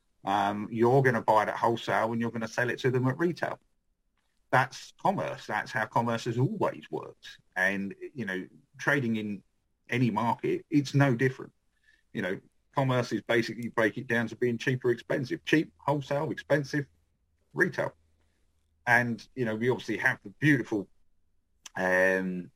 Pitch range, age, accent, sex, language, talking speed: 95-130 Hz, 40-59, British, male, English, 165 wpm